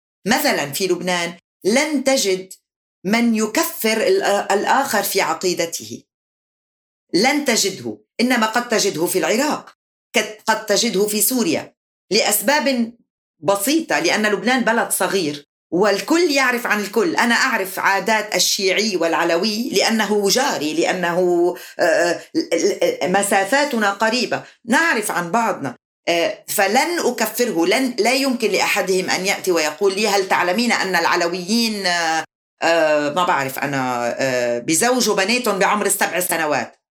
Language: Arabic